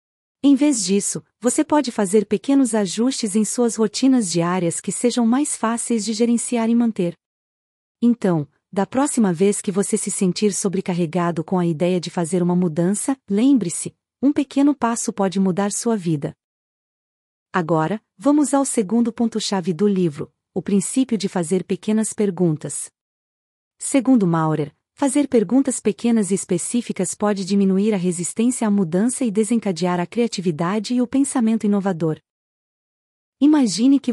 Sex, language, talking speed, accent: female, Portuguese, 140 wpm, Brazilian